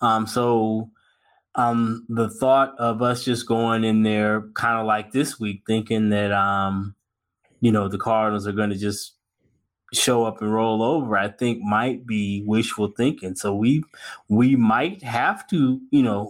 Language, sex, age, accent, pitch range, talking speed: English, male, 20-39, American, 100-120 Hz, 165 wpm